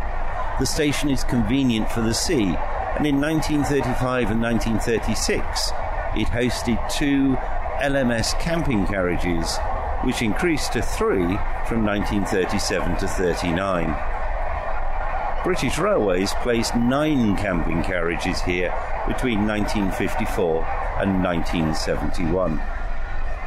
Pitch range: 90-125 Hz